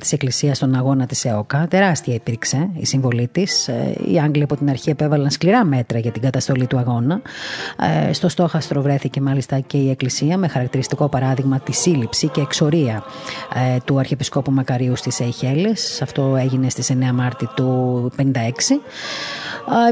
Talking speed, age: 150 wpm, 30-49